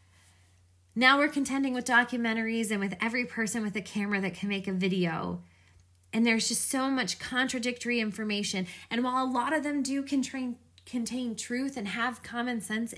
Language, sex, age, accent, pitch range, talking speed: English, female, 20-39, American, 165-260 Hz, 175 wpm